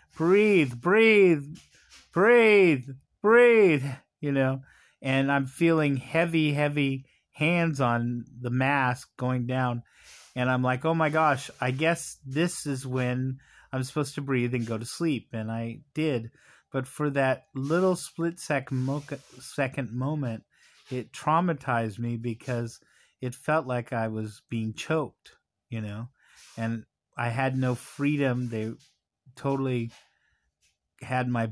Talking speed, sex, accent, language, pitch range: 130 wpm, male, American, English, 120-155 Hz